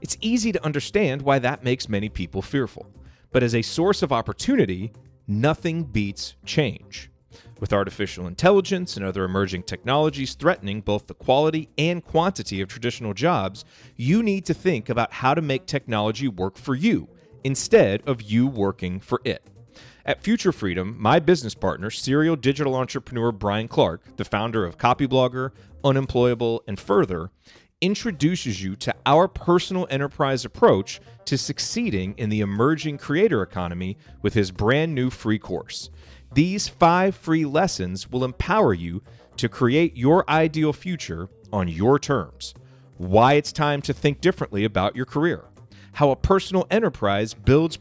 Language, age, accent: English, 30-49, American